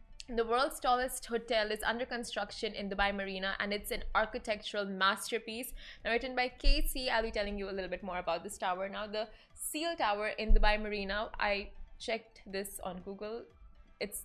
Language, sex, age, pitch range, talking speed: Arabic, female, 20-39, 205-240 Hz, 180 wpm